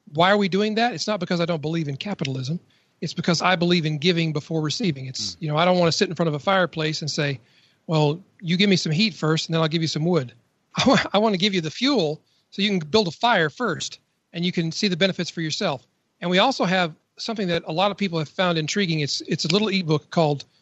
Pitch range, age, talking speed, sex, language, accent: 155-195 Hz, 40-59, 265 wpm, male, English, American